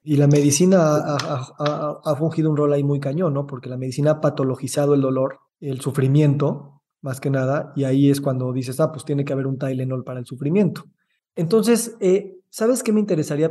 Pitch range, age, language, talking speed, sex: 130-150 Hz, 20-39, Spanish, 200 wpm, male